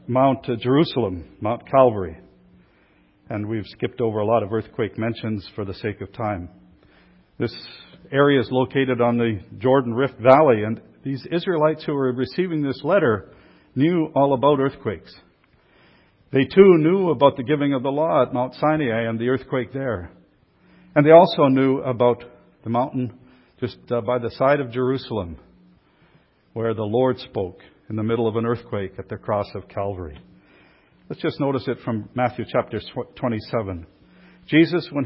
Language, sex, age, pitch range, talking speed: English, male, 50-69, 105-140 Hz, 160 wpm